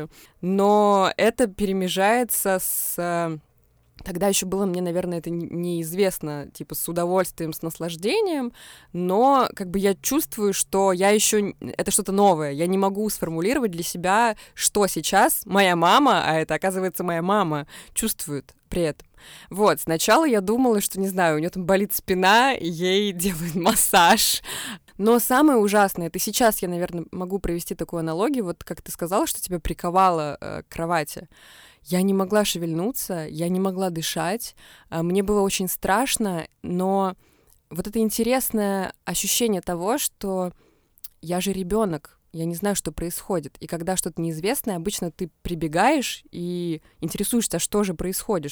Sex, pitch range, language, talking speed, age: female, 165-205 Hz, Russian, 145 wpm, 20-39